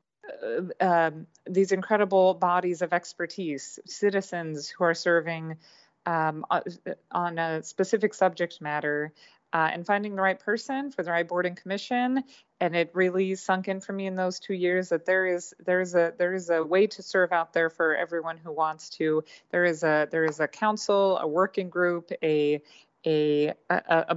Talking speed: 180 wpm